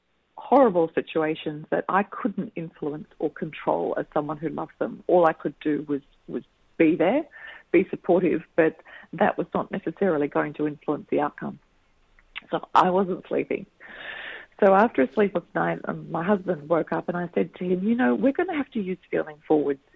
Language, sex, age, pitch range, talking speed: English, female, 40-59, 155-210 Hz, 185 wpm